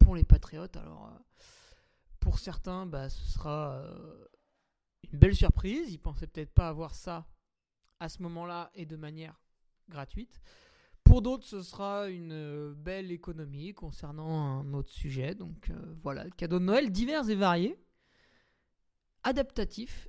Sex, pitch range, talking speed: male, 150-190 Hz, 150 wpm